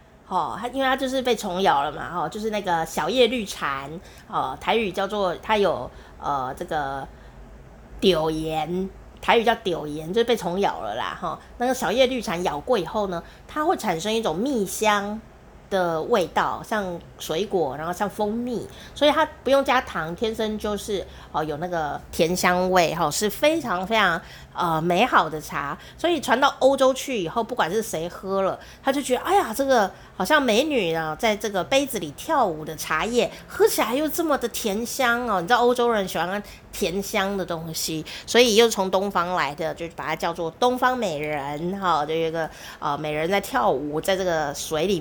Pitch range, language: 170-235 Hz, Chinese